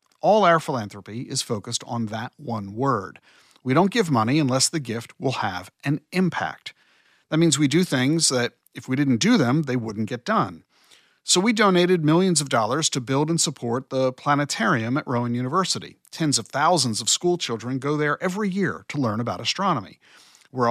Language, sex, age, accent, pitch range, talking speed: English, male, 50-69, American, 120-160 Hz, 185 wpm